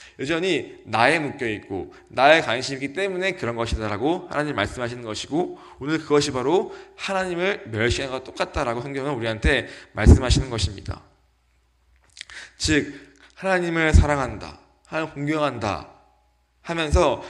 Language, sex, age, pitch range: Korean, male, 20-39, 110-150 Hz